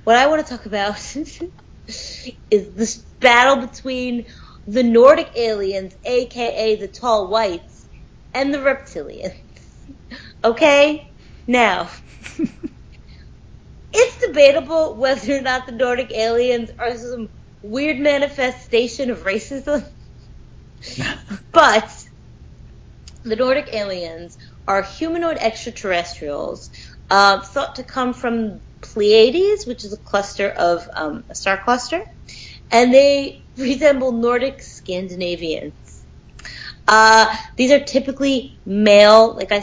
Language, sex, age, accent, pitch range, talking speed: English, female, 30-49, American, 205-275 Hz, 105 wpm